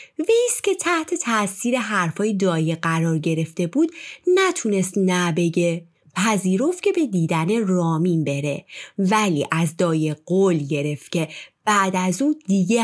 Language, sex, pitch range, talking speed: Persian, female, 170-245 Hz, 125 wpm